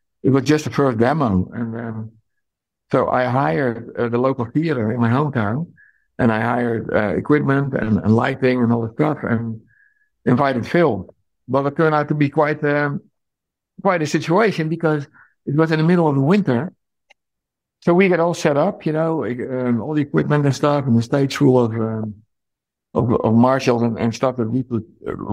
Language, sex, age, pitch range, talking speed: English, male, 60-79, 110-135 Hz, 190 wpm